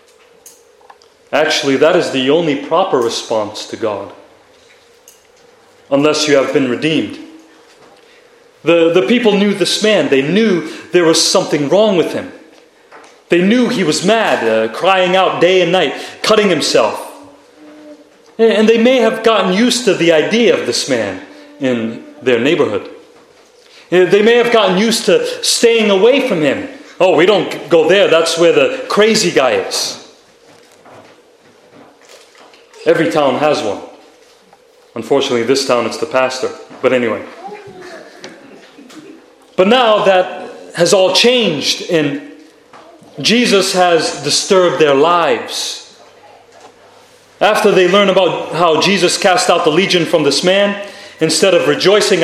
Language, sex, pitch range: English, male, 170-260 Hz